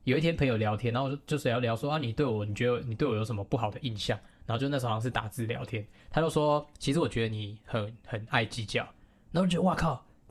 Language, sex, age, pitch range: Chinese, male, 10-29, 110-140 Hz